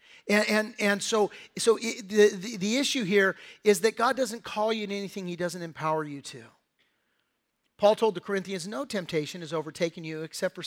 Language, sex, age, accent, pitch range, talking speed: English, male, 50-69, American, 185-230 Hz, 190 wpm